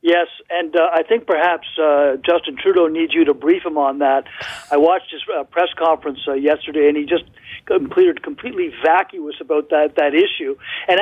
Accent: American